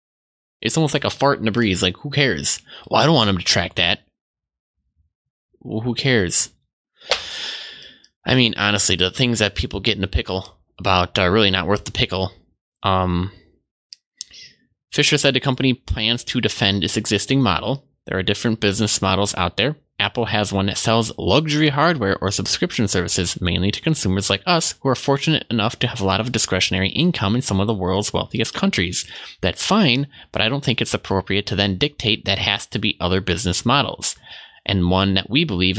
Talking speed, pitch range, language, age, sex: 190 wpm, 90-120 Hz, English, 20-39, male